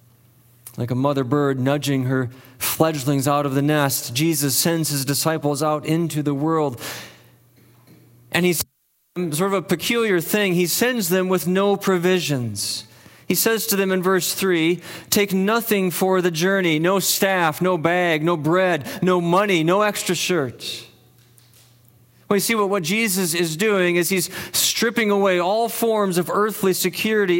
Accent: American